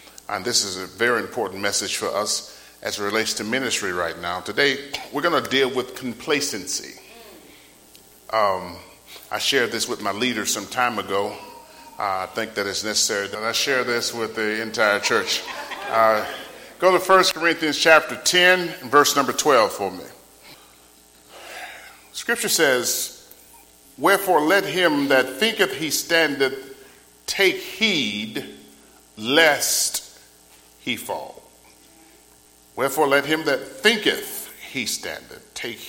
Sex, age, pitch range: male, 40-59, 90-145 Hz